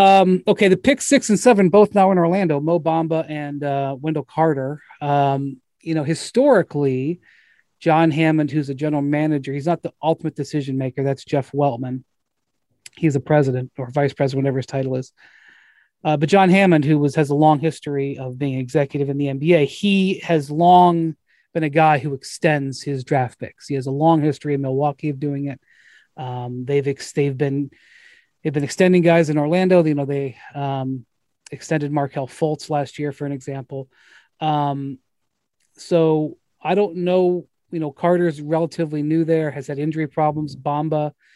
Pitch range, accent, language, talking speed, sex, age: 140-165 Hz, American, English, 175 wpm, male, 30-49